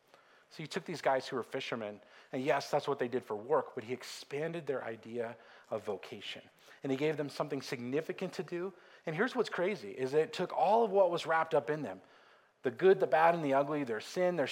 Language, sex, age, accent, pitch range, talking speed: English, male, 40-59, American, 130-180 Hz, 230 wpm